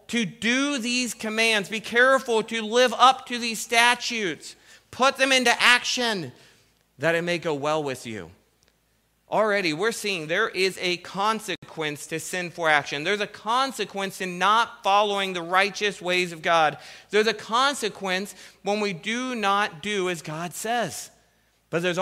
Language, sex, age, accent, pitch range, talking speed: English, male, 40-59, American, 150-210 Hz, 160 wpm